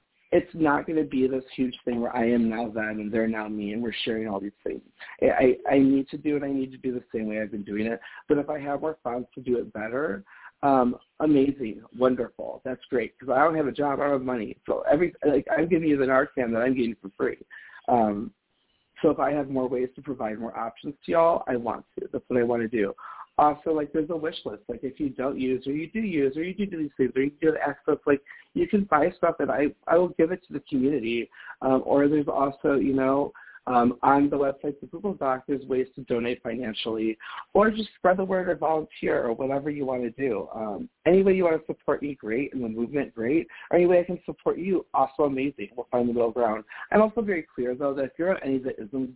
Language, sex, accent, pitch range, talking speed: English, male, American, 125-155 Hz, 260 wpm